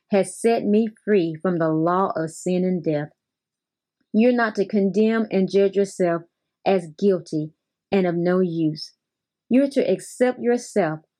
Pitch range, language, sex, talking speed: 175-220 Hz, English, female, 150 wpm